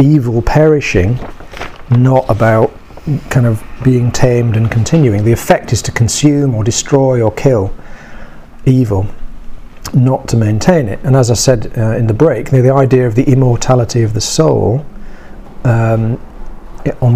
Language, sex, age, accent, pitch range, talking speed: English, male, 40-59, British, 110-130 Hz, 155 wpm